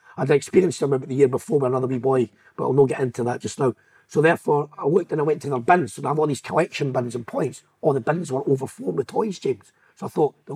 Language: English